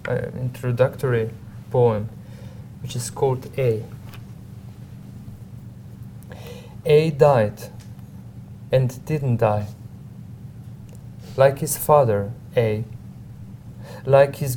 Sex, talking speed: male, 75 wpm